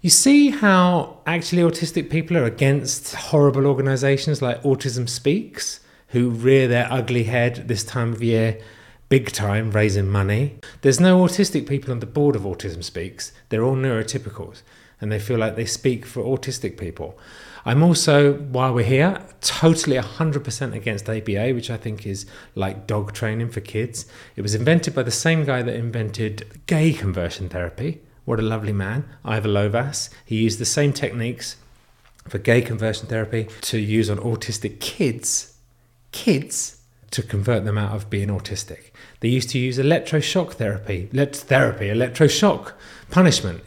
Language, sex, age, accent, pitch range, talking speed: English, male, 30-49, British, 105-140 Hz, 160 wpm